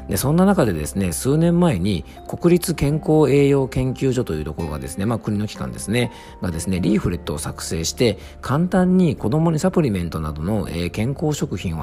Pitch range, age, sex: 85-130 Hz, 40-59, male